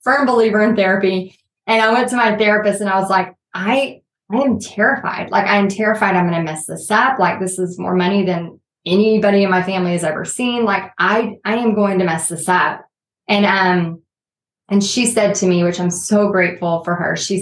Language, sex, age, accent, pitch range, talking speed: English, female, 20-39, American, 185-220 Hz, 215 wpm